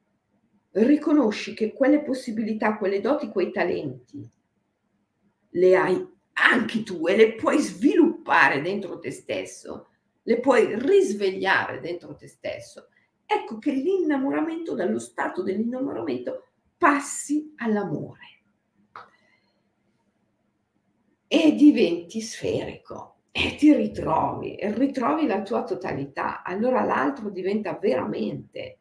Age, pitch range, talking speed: 50-69, 200-305 Hz, 100 wpm